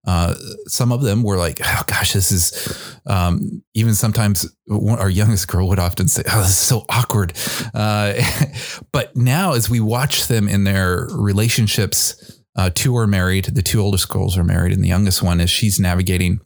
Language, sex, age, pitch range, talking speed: English, male, 30-49, 95-120 Hz, 185 wpm